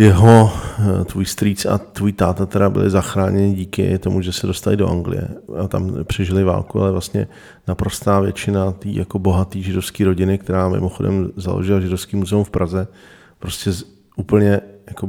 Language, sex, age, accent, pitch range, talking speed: Czech, male, 40-59, native, 95-105 Hz, 155 wpm